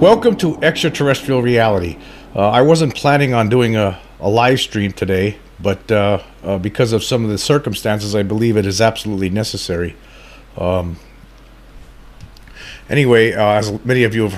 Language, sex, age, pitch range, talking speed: English, male, 50-69, 100-125 Hz, 160 wpm